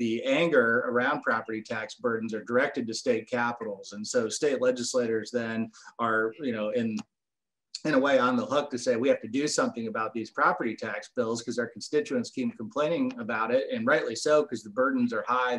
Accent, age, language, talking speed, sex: American, 30-49, English, 205 wpm, male